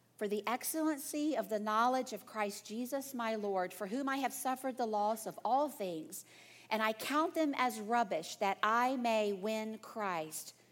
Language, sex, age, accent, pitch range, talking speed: English, female, 50-69, American, 205-265 Hz, 180 wpm